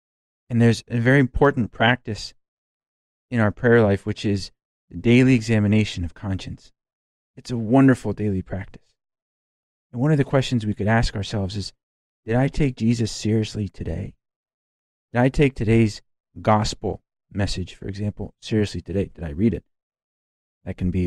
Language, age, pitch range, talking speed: English, 40-59, 95-120 Hz, 155 wpm